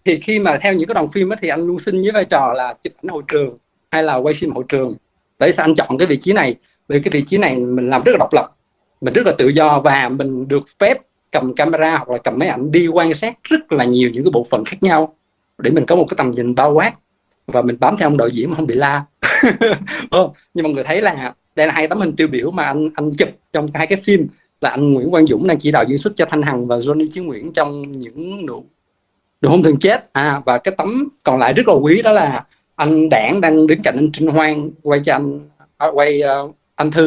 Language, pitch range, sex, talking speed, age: Vietnamese, 135-180 Hz, male, 265 wpm, 20-39